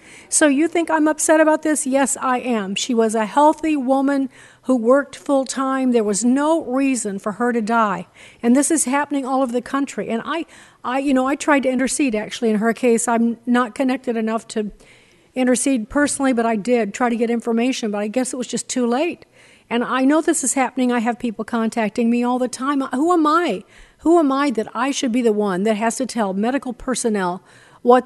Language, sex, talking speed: English, female, 225 wpm